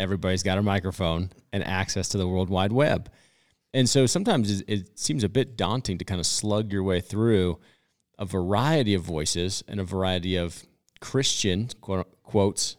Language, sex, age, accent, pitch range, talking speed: English, male, 40-59, American, 95-110 Hz, 170 wpm